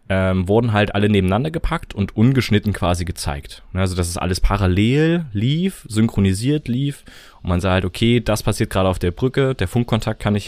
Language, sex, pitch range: German, male, 85-105 Hz